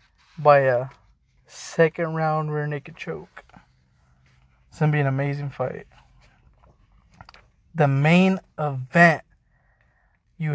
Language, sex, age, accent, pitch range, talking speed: English, male, 20-39, American, 140-155 Hz, 95 wpm